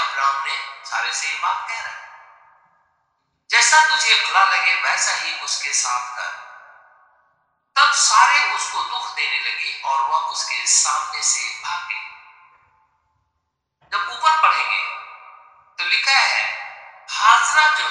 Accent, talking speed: native, 110 wpm